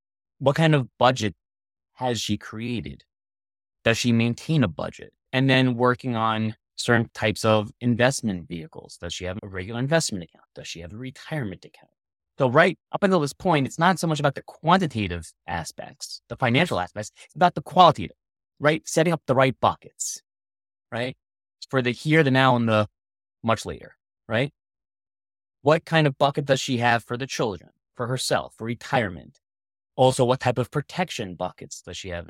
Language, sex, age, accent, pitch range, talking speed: English, male, 30-49, American, 100-135 Hz, 175 wpm